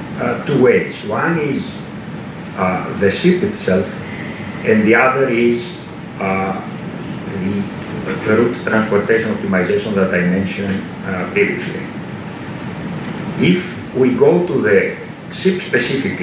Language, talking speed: English, 105 wpm